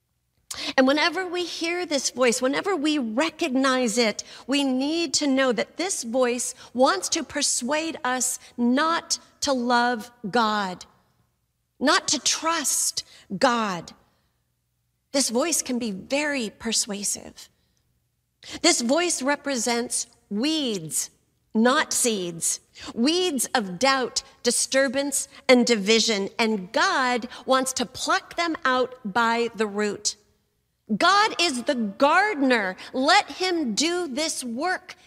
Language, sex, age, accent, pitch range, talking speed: English, female, 40-59, American, 220-295 Hz, 115 wpm